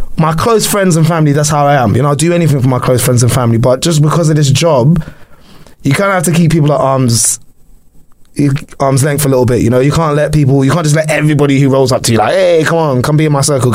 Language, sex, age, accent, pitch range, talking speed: English, male, 20-39, British, 130-165 Hz, 285 wpm